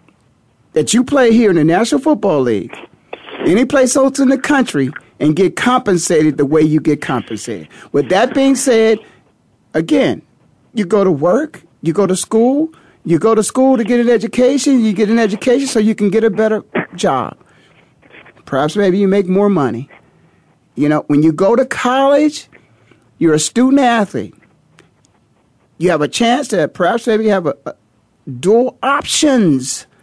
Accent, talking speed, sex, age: American, 170 wpm, male, 50-69